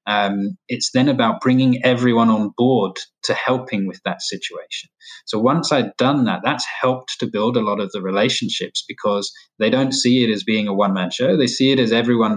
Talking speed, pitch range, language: 205 wpm, 105-130 Hz, English